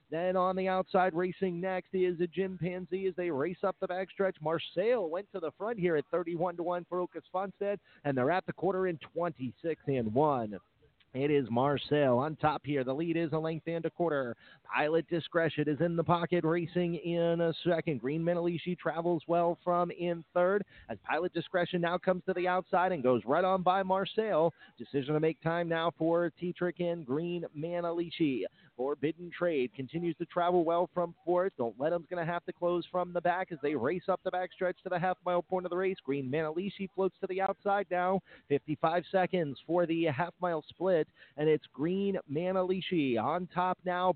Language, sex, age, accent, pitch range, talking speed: English, male, 40-59, American, 165-185 Hz, 195 wpm